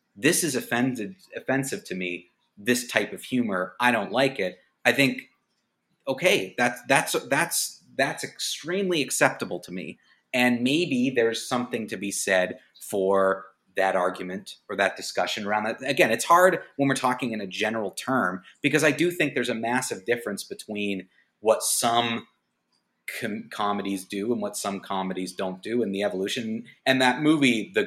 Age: 30-49